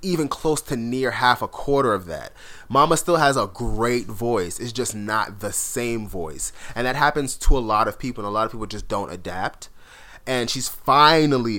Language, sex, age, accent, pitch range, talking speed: English, male, 30-49, American, 105-135 Hz, 205 wpm